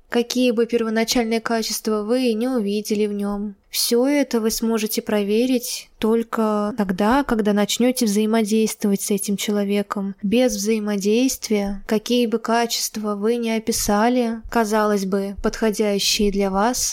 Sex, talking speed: female, 125 wpm